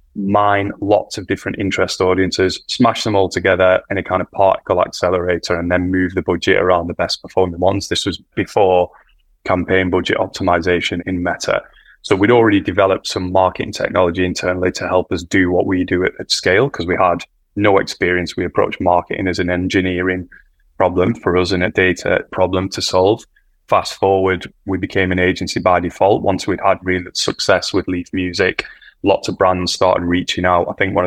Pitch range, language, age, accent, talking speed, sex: 90-95 Hz, English, 20-39, British, 185 wpm, male